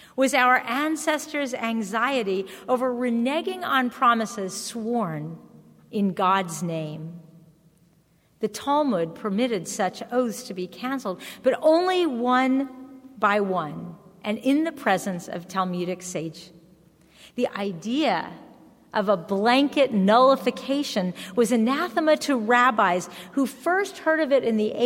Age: 40-59